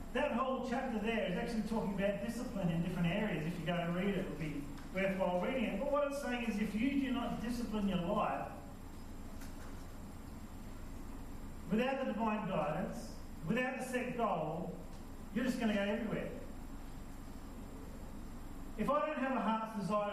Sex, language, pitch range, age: male, English, 170-225 Hz, 40-59